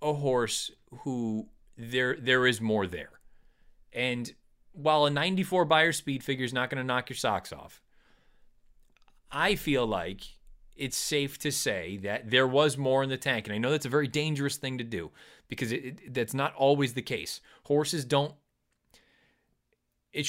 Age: 30-49